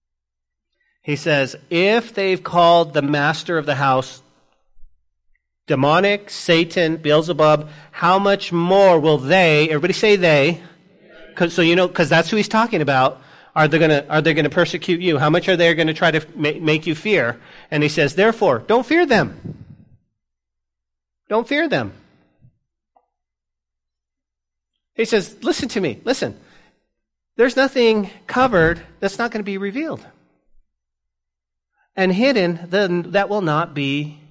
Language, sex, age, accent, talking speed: English, male, 40-59, American, 140 wpm